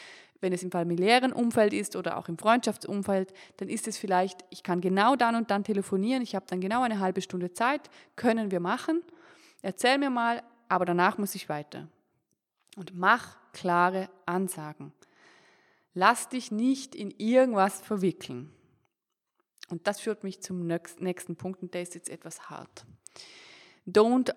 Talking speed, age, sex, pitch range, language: 160 wpm, 20-39, female, 175-225 Hz, German